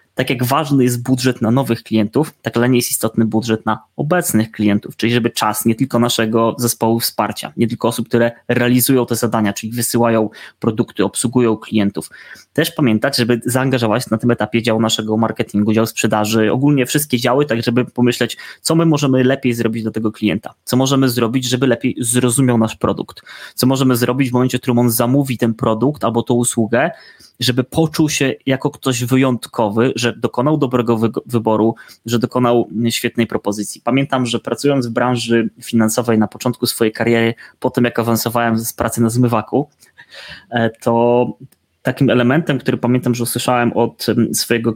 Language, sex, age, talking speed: Polish, male, 20-39, 170 wpm